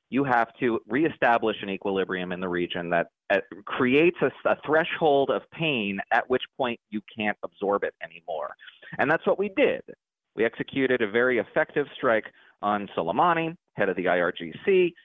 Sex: male